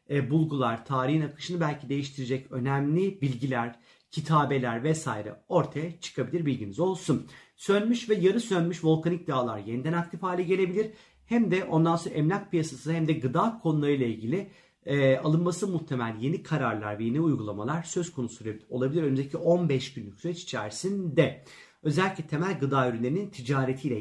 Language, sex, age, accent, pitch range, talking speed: Turkish, male, 40-59, native, 130-185 Hz, 135 wpm